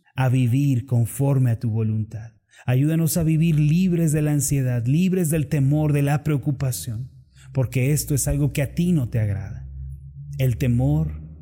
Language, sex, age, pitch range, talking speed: Spanish, male, 30-49, 120-150 Hz, 165 wpm